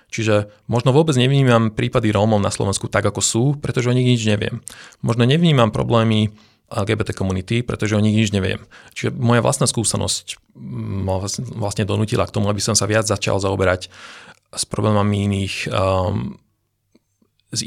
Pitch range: 100-115 Hz